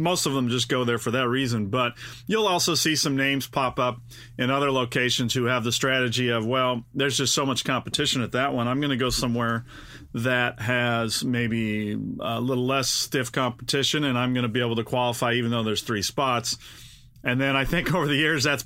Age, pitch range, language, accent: 40-59, 115-130 Hz, English, American